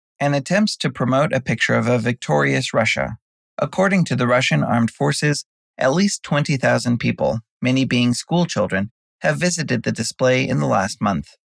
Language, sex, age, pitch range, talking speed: English, male, 30-49, 120-160 Hz, 160 wpm